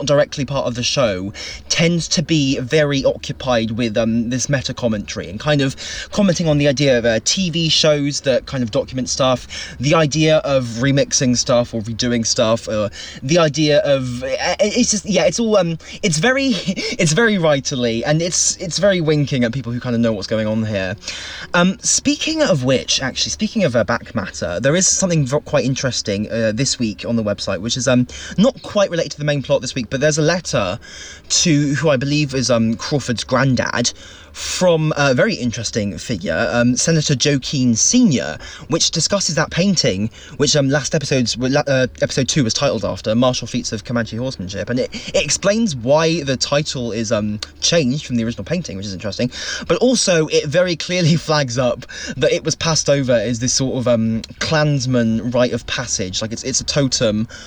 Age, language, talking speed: 20-39, English, 195 wpm